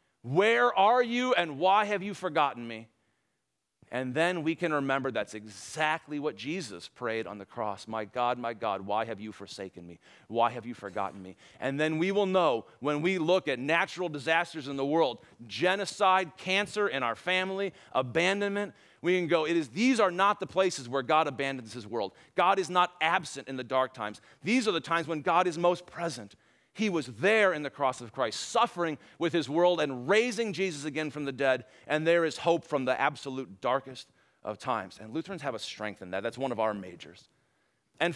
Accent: American